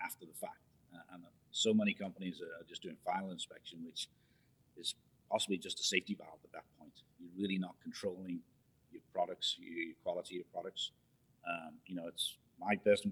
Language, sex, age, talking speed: English, male, 40-59, 180 wpm